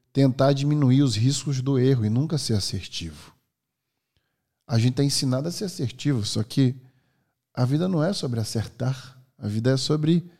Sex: male